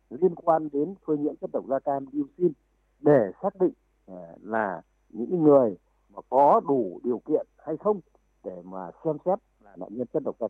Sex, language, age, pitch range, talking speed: male, Vietnamese, 60-79, 135-200 Hz, 195 wpm